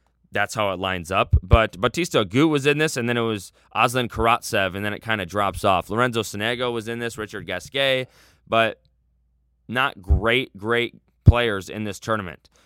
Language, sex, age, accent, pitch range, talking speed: English, male, 20-39, American, 105-140 Hz, 185 wpm